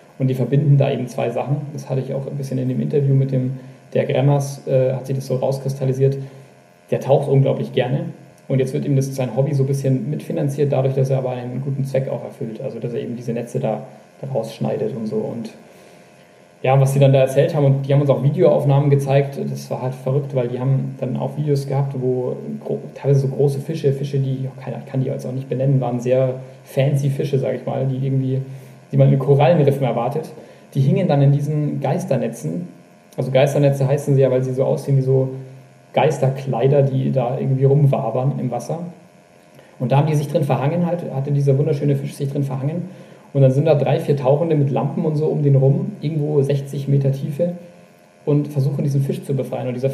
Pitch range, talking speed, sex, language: 130-145 Hz, 215 wpm, male, German